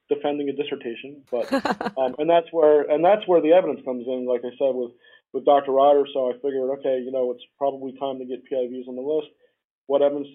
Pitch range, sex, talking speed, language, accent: 120-145 Hz, male, 225 wpm, English, American